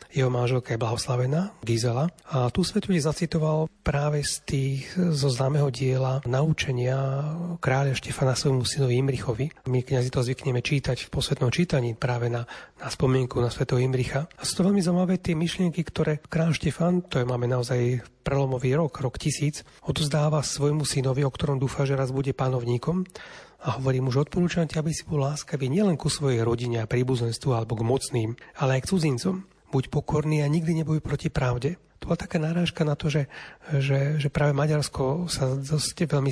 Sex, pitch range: male, 130-155 Hz